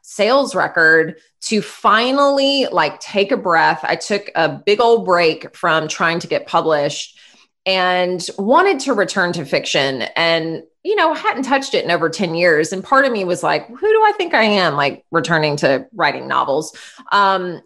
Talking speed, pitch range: 180 wpm, 165-235 Hz